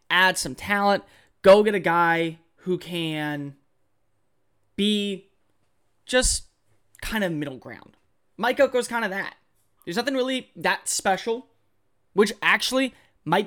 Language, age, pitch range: English, 20-39, 150-200 Hz